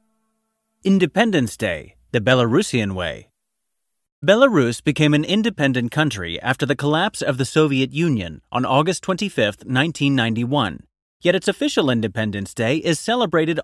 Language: English